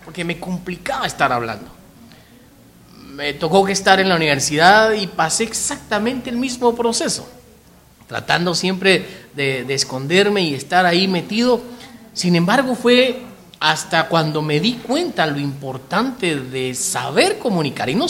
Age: 40-59